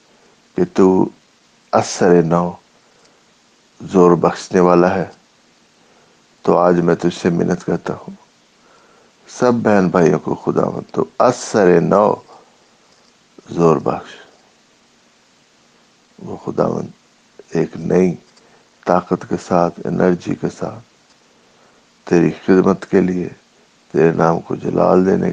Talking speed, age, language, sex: 110 wpm, 60-79, English, male